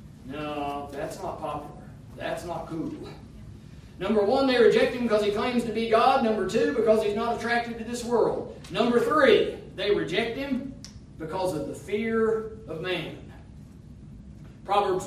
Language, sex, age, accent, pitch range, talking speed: English, male, 40-59, American, 150-235 Hz, 155 wpm